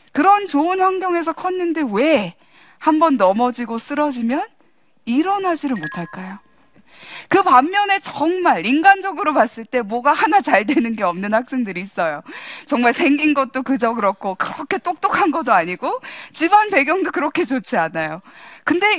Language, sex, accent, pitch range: Korean, female, native, 230-355 Hz